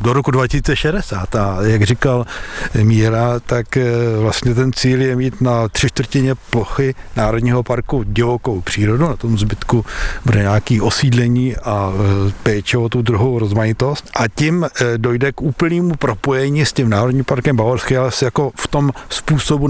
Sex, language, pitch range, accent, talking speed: male, Czech, 110-130 Hz, native, 145 wpm